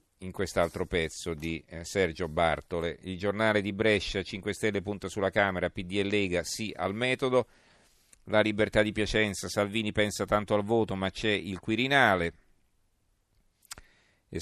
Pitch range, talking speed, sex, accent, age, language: 90-105 Hz, 145 wpm, male, native, 40-59, Italian